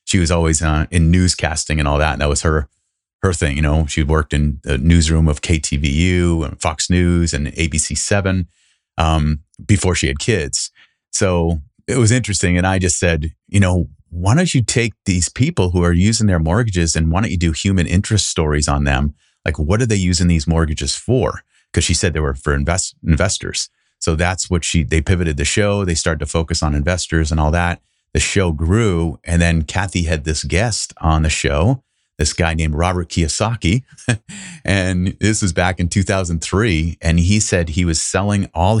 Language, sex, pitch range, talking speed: English, male, 80-95 Hz, 200 wpm